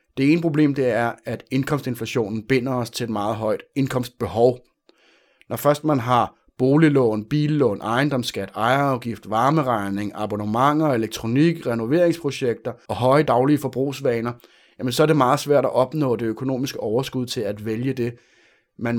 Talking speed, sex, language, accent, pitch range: 140 wpm, male, Danish, native, 115-145 Hz